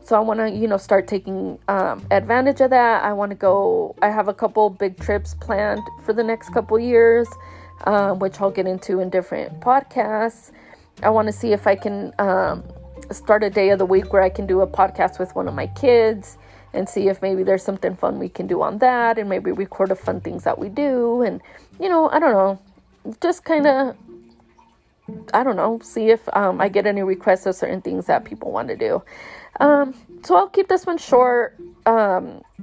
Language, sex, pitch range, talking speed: English, female, 190-230 Hz, 215 wpm